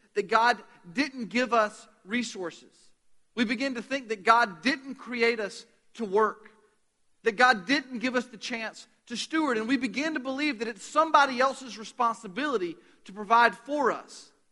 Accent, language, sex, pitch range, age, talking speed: American, English, male, 205-270 Hz, 40-59, 165 wpm